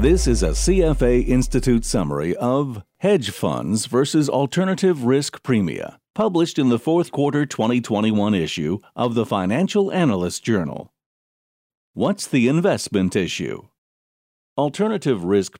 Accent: American